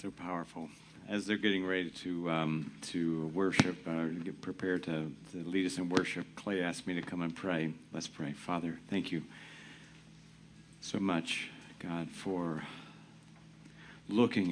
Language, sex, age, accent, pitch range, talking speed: English, male, 50-69, American, 85-100 Hz, 150 wpm